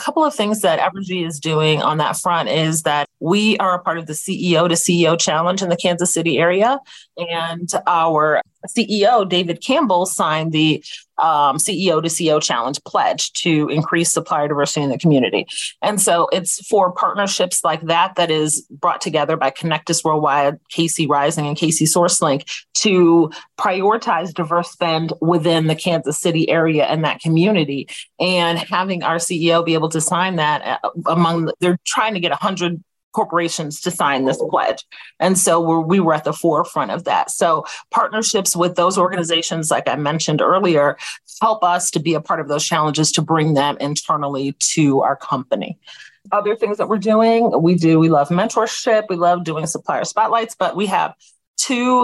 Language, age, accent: English, 30-49, American